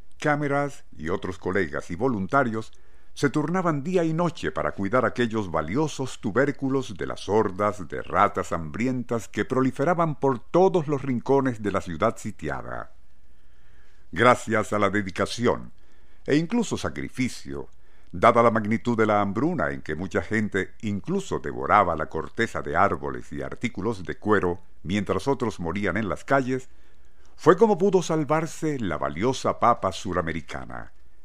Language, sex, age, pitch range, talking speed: Spanish, male, 50-69, 85-135 Hz, 140 wpm